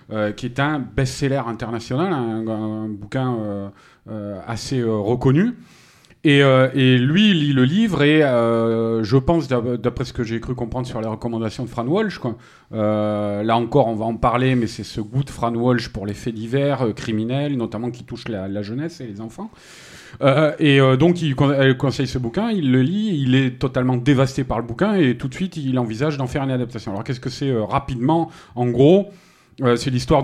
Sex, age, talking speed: male, 40-59, 215 wpm